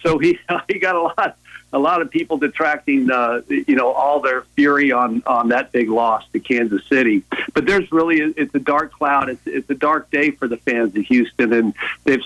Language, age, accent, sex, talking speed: English, 50-69, American, male, 220 wpm